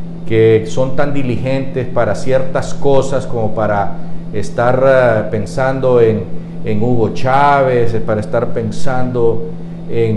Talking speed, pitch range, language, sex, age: 110 wpm, 115-160 Hz, Spanish, male, 50-69